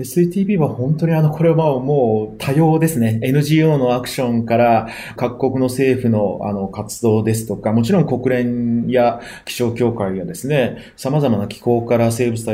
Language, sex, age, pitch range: Japanese, male, 30-49, 115-165 Hz